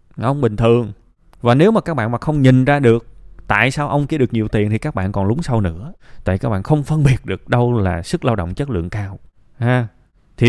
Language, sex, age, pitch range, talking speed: Vietnamese, male, 20-39, 105-160 Hz, 250 wpm